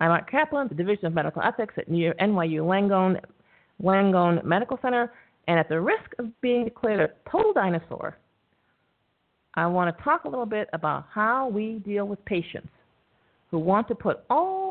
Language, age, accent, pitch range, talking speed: English, 50-69, American, 170-250 Hz, 170 wpm